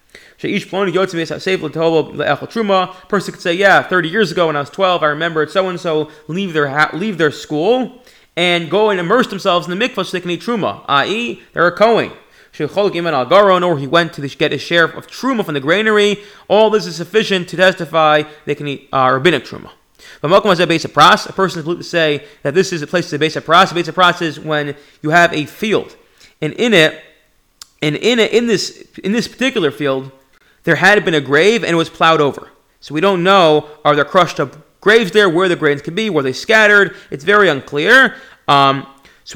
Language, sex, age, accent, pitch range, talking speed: English, male, 30-49, American, 150-195 Hz, 210 wpm